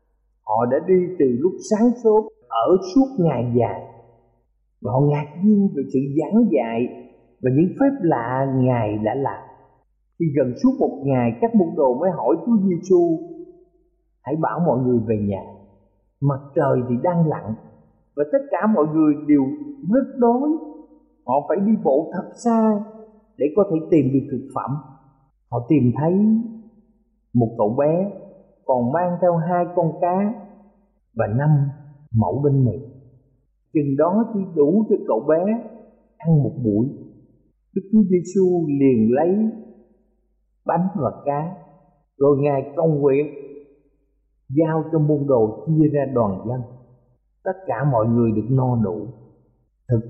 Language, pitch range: Thai, 125-195 Hz